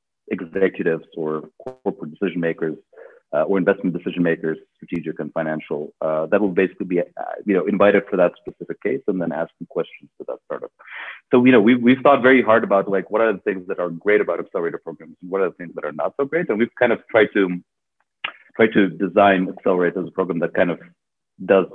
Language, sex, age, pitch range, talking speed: English, male, 40-59, 85-110 Hz, 225 wpm